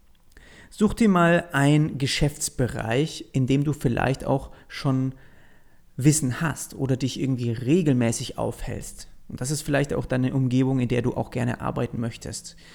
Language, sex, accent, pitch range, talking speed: German, male, German, 125-160 Hz, 150 wpm